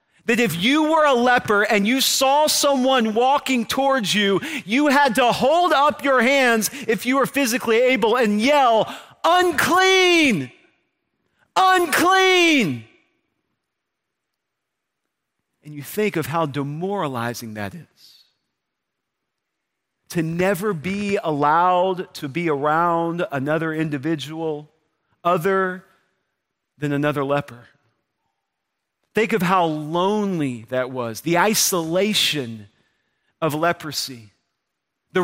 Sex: male